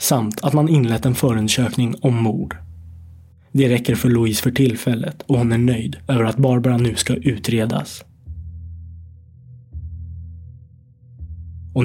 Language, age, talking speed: Swedish, 20-39, 125 wpm